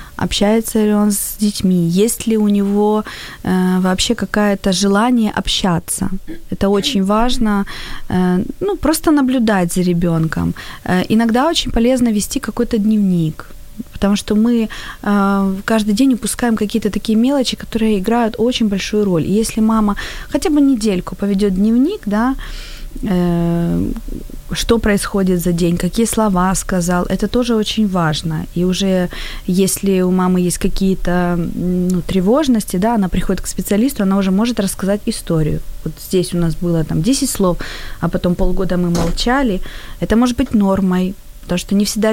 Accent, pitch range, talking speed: native, 180-220 Hz, 150 wpm